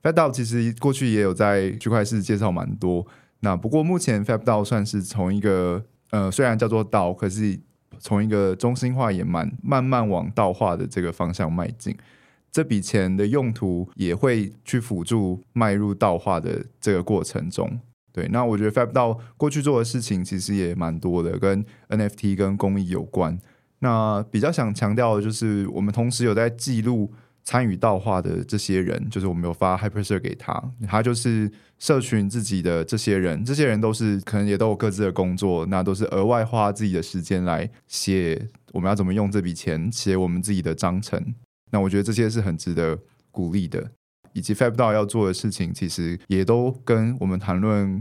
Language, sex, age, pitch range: Chinese, male, 20-39, 95-115 Hz